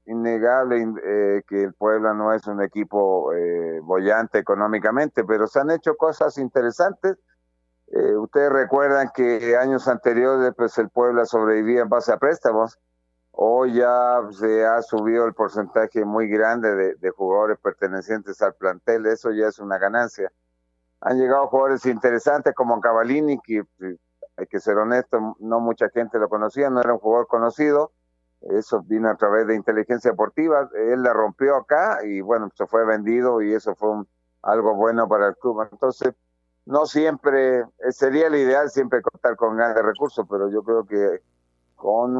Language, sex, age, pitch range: Spanish, male, 50-69, 105-125 Hz